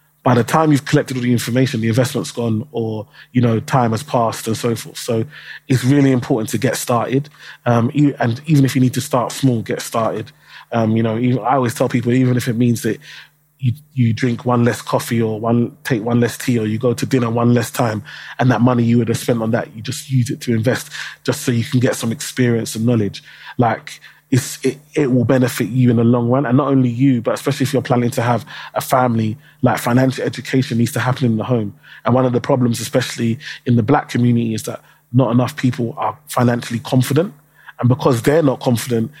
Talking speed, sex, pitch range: 230 wpm, male, 115-130 Hz